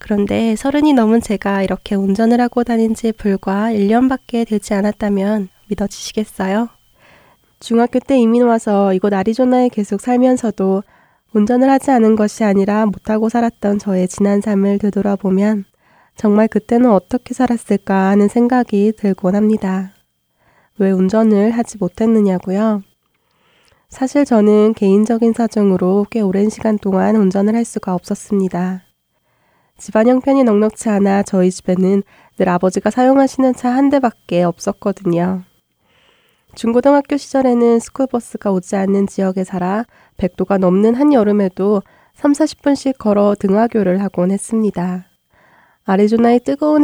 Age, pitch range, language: 20-39, 195-235 Hz, Korean